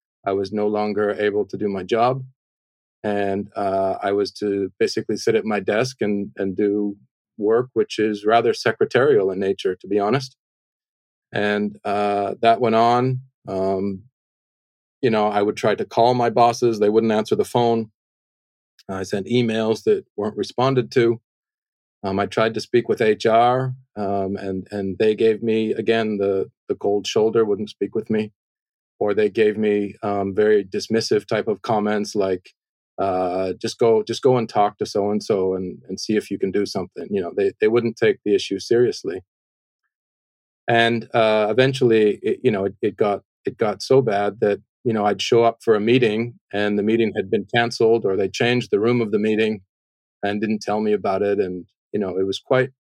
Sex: male